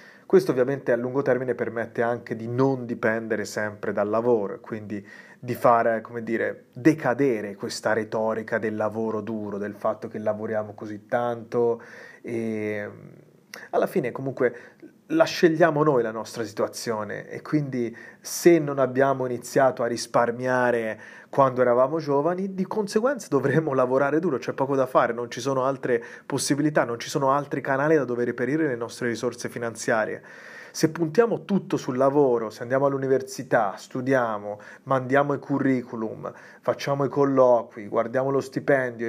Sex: male